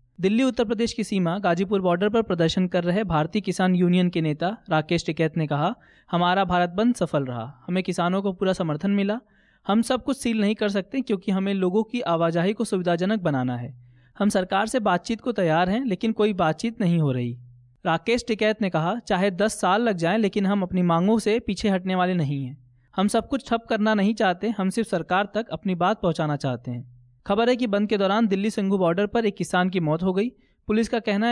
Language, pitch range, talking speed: Hindi, 165-215 Hz, 220 wpm